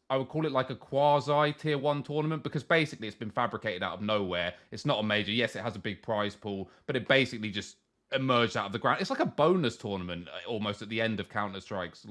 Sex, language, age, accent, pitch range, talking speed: male, English, 30-49, British, 100-125 Hz, 245 wpm